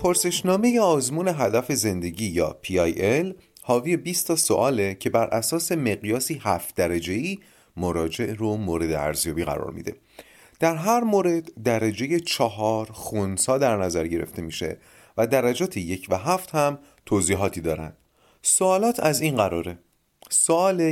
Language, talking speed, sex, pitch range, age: Persian, 130 wpm, male, 100-165 Hz, 30-49